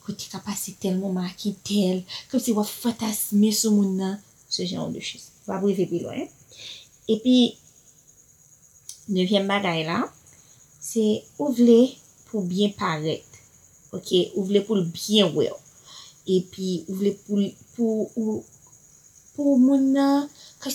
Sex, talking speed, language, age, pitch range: female, 125 wpm, French, 30-49, 185-220 Hz